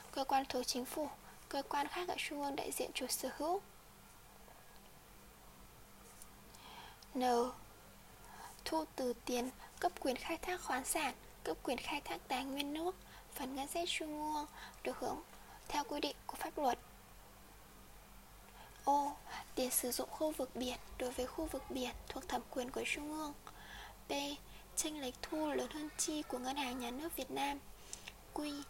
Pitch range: 265-340 Hz